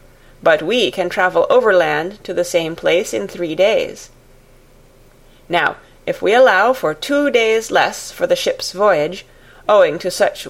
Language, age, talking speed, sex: English, 30-49, 155 wpm, female